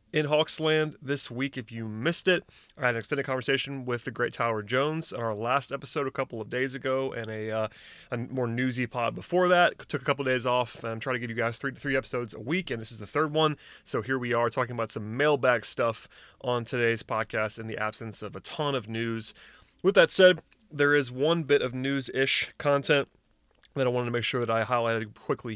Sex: male